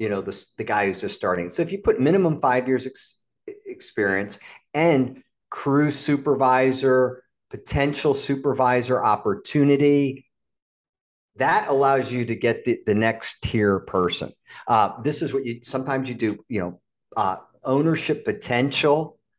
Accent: American